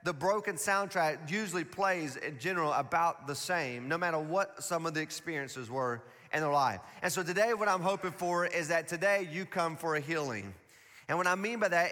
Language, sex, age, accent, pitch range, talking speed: English, male, 30-49, American, 155-195 Hz, 210 wpm